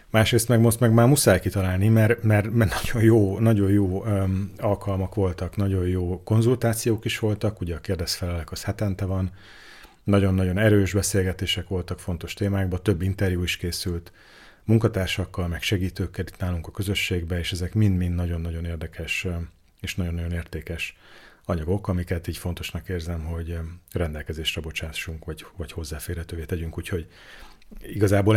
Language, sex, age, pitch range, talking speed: Hungarian, male, 30-49, 90-105 Hz, 140 wpm